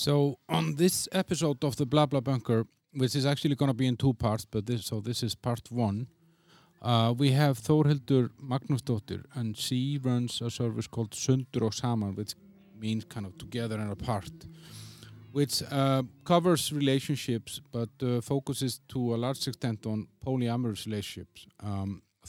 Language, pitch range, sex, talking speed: English, 110-135 Hz, male, 165 wpm